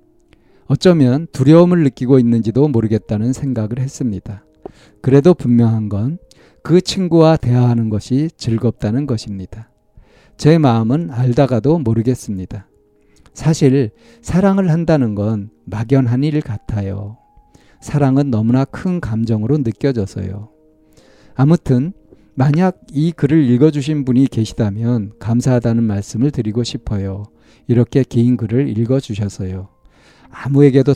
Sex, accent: male, native